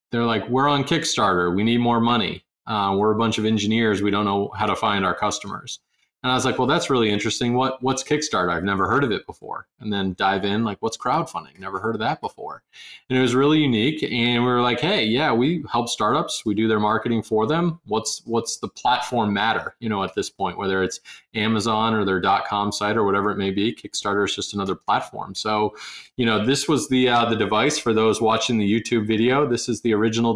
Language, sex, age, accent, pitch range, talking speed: English, male, 20-39, American, 105-125 Hz, 235 wpm